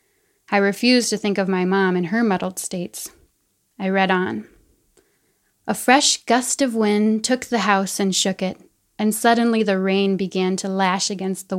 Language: English